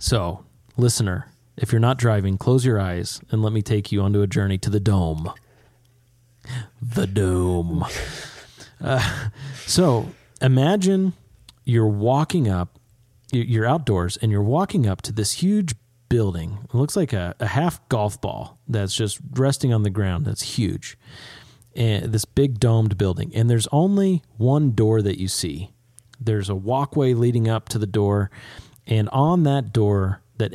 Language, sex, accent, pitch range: English, male, American, 105-125 Hz